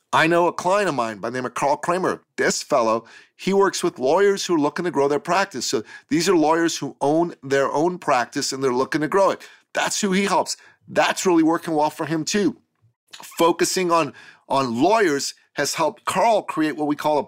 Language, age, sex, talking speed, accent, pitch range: English, 40-59, male, 220 wpm, American, 140-200 Hz